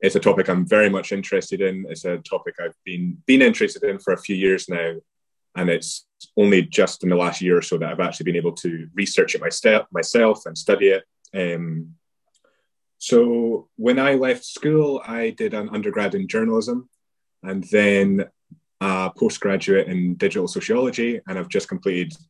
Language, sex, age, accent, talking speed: English, male, 20-39, British, 180 wpm